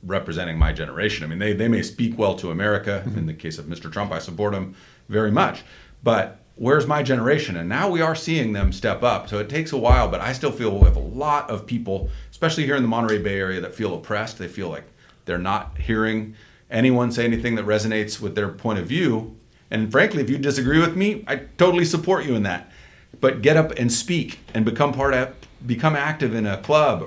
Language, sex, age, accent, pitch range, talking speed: English, male, 40-59, American, 105-140 Hz, 230 wpm